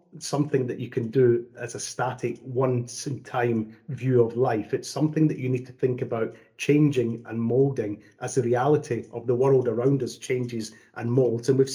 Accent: British